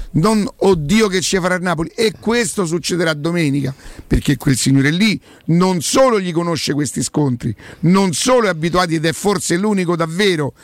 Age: 50-69